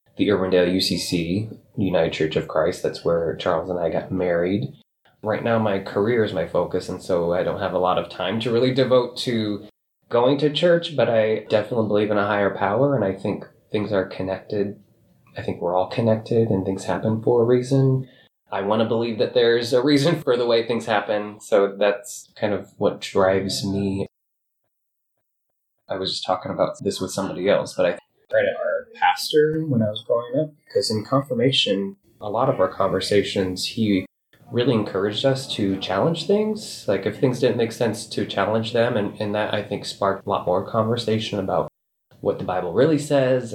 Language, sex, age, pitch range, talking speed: English, male, 20-39, 95-120 Hz, 195 wpm